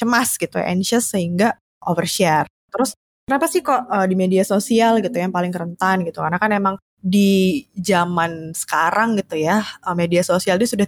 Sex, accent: female, native